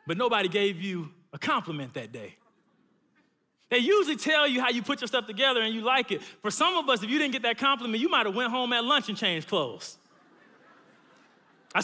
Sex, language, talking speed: male, English, 220 wpm